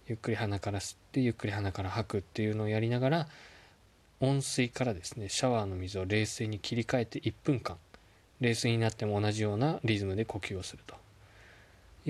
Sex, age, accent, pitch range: male, 20-39, native, 95-115 Hz